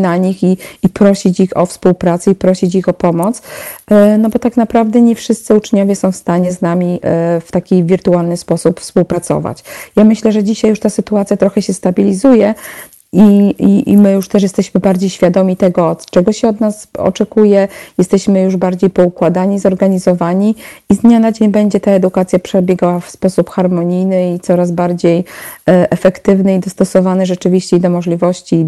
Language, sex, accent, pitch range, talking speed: Polish, female, native, 180-200 Hz, 170 wpm